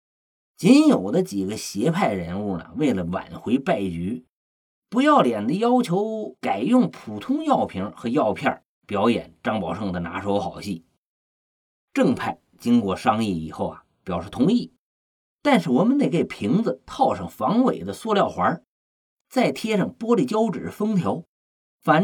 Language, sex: Chinese, male